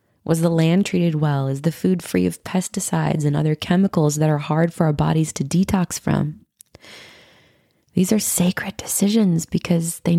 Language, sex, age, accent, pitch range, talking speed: English, female, 20-39, American, 140-185 Hz, 170 wpm